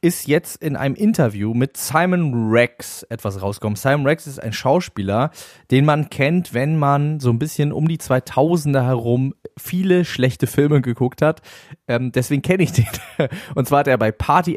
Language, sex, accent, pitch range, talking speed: German, male, German, 115-150 Hz, 175 wpm